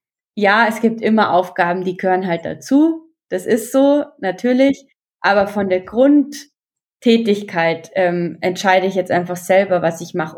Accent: German